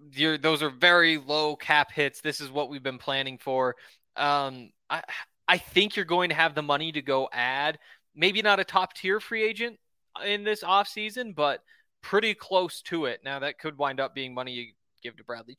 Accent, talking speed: American, 205 wpm